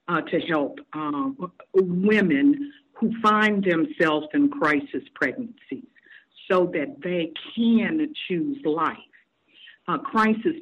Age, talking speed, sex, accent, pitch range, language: 60-79, 105 wpm, female, American, 155-235 Hz, English